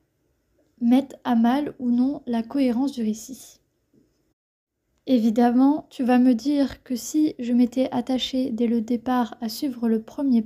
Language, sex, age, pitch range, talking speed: French, female, 20-39, 235-275 Hz, 150 wpm